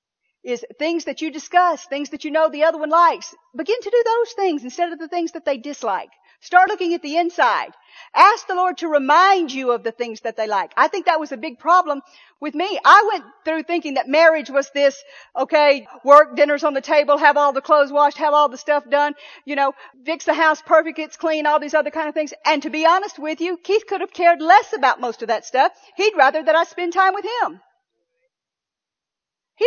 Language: English